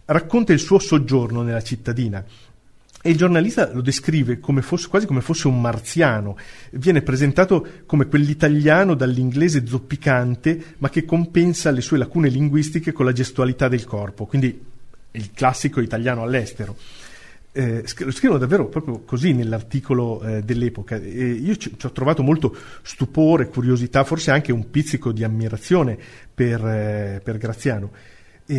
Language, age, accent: Italian, 40-59, native